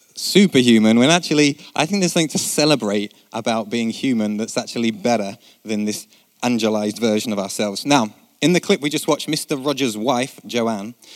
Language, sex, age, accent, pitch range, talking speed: English, male, 30-49, British, 110-145 Hz, 170 wpm